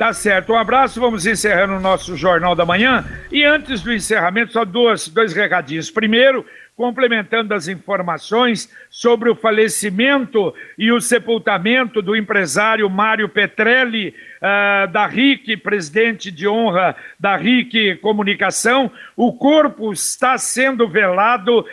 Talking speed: 125 wpm